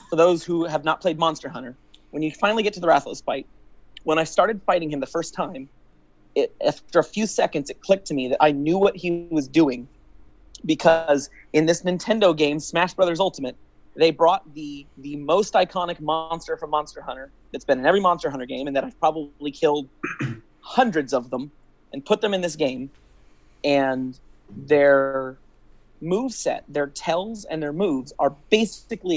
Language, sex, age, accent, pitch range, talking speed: English, male, 30-49, American, 135-170 Hz, 185 wpm